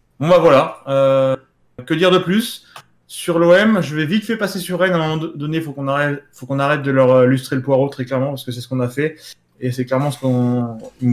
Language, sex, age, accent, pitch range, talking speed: French, male, 20-39, French, 125-150 Hz, 230 wpm